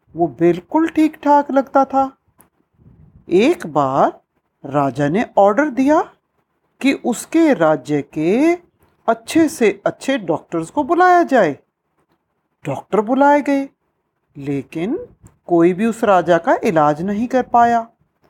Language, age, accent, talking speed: Hindi, 60-79, native, 120 wpm